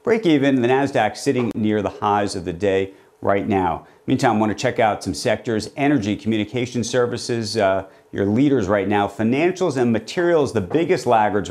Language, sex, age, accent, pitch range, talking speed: English, male, 40-59, American, 105-135 Hz, 180 wpm